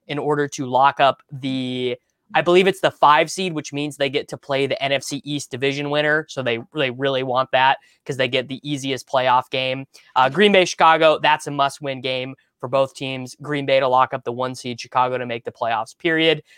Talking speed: 220 wpm